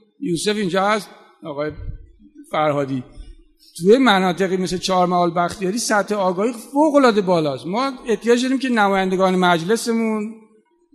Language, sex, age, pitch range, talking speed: Persian, male, 50-69, 185-235 Hz, 110 wpm